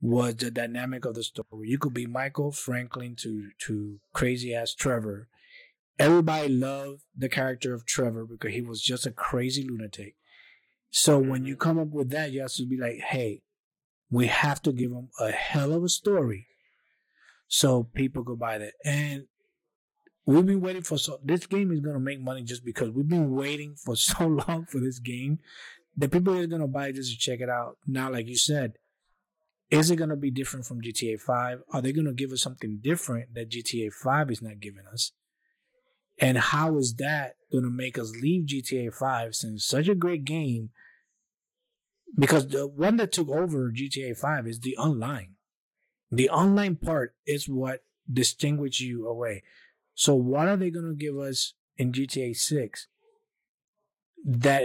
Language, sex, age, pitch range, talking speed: English, male, 30-49, 120-155 Hz, 180 wpm